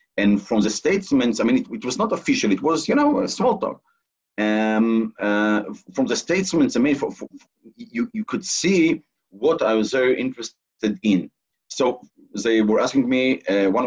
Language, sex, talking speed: Hebrew, male, 180 wpm